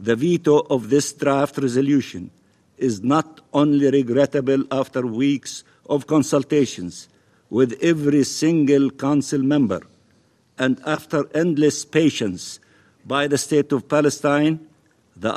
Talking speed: 115 wpm